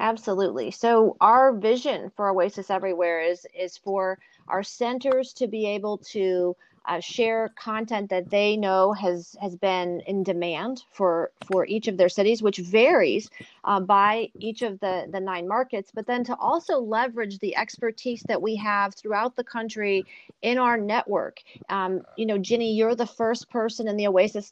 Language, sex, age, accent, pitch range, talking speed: English, female, 40-59, American, 185-230 Hz, 170 wpm